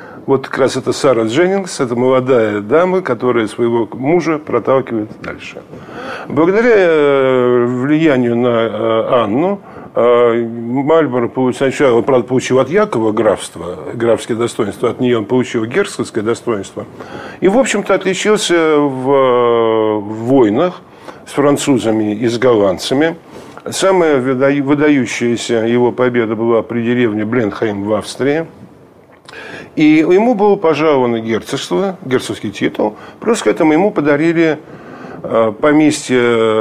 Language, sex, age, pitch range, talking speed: Russian, male, 50-69, 120-155 Hz, 110 wpm